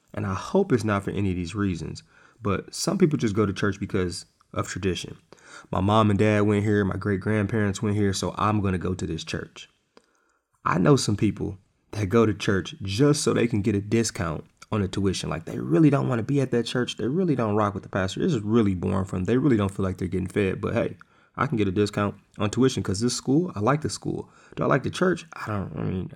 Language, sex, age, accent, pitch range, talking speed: English, male, 20-39, American, 95-115 Hz, 260 wpm